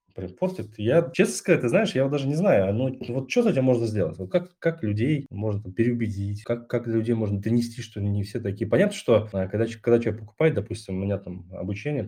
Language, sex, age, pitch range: Russian, male, 20-39, 100-130 Hz